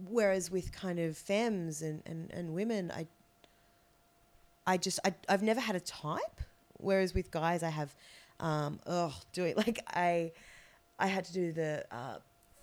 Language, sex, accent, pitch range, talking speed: English, female, Australian, 155-195 Hz, 175 wpm